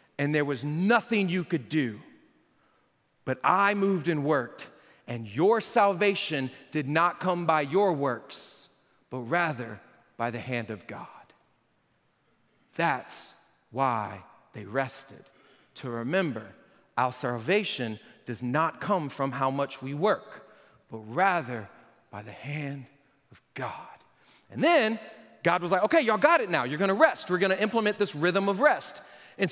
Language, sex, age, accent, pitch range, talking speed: English, male, 40-59, American, 145-215 Hz, 145 wpm